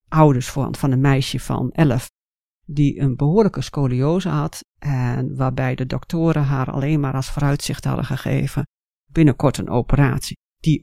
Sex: female